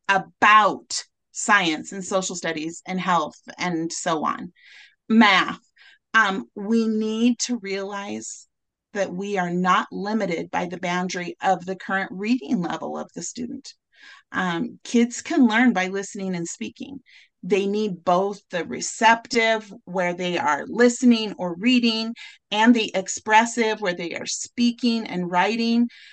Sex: female